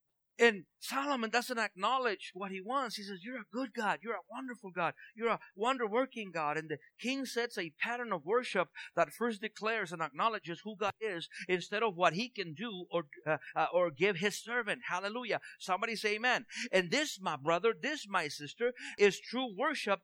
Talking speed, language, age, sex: 195 wpm, English, 50-69, male